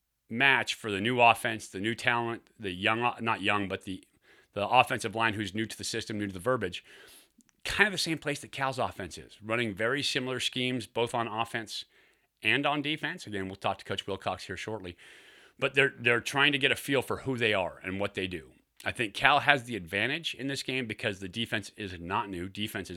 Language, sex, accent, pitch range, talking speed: English, male, American, 100-125 Hz, 220 wpm